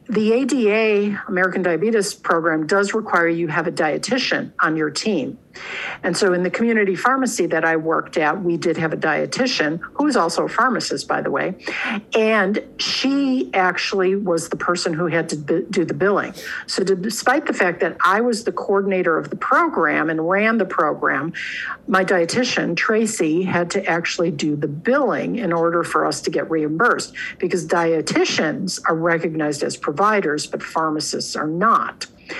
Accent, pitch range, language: American, 170-220 Hz, English